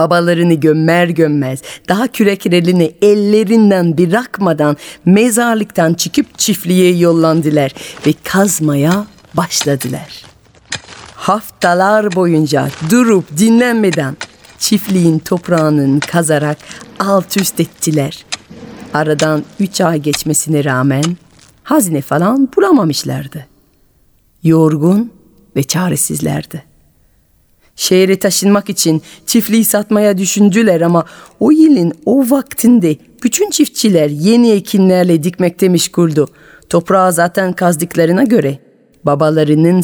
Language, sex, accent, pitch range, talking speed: Turkish, female, native, 150-200 Hz, 85 wpm